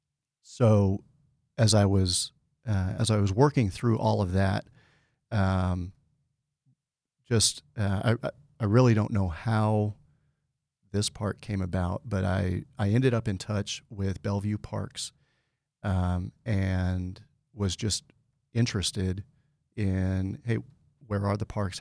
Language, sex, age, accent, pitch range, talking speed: English, male, 40-59, American, 95-120 Hz, 130 wpm